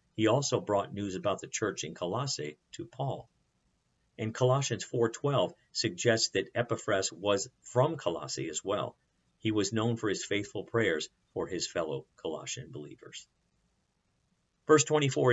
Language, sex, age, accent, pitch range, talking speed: English, male, 50-69, American, 95-130 Hz, 140 wpm